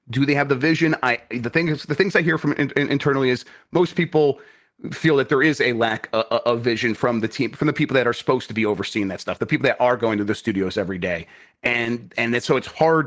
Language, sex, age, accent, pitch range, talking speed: English, male, 30-49, American, 110-145 Hz, 265 wpm